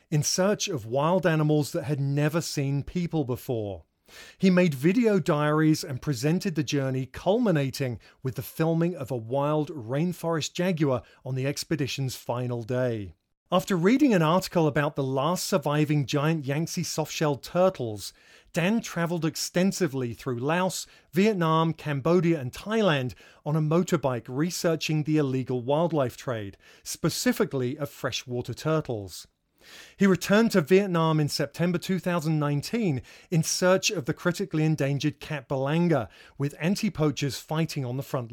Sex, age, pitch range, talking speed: male, 30-49, 135-175 Hz, 135 wpm